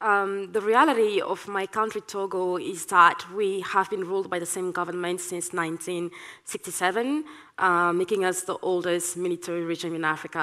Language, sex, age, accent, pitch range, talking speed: English, female, 20-39, French, 170-200 Hz, 160 wpm